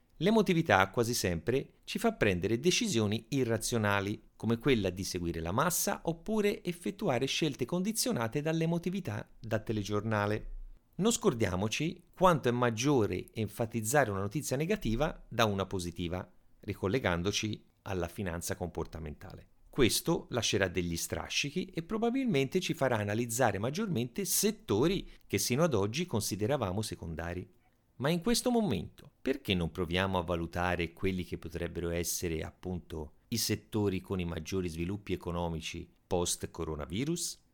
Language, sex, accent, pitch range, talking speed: Italian, male, native, 95-155 Hz, 120 wpm